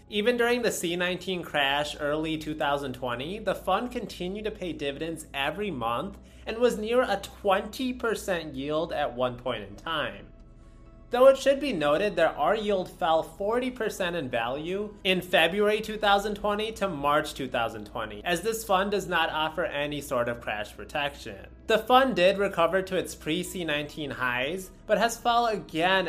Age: 20-39